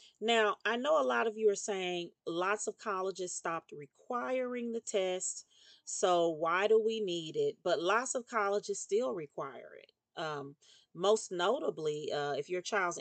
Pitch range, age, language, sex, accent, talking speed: 185-245 Hz, 40-59, English, female, American, 165 wpm